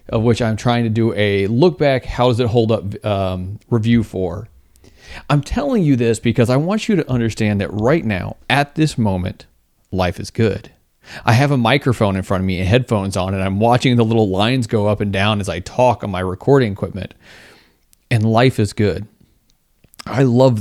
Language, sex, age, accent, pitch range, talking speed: English, male, 30-49, American, 100-120 Hz, 205 wpm